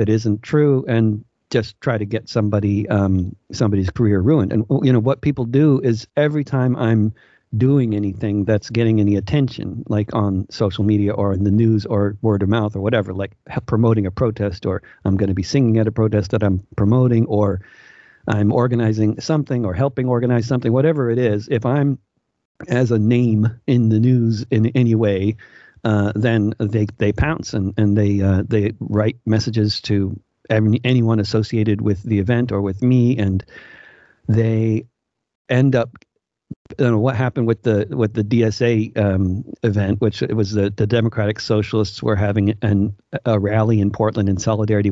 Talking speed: 175 wpm